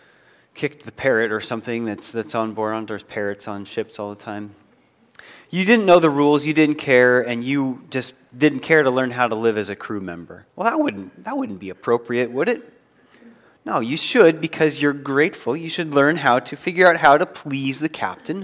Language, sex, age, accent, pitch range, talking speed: English, male, 30-49, American, 120-160 Hz, 210 wpm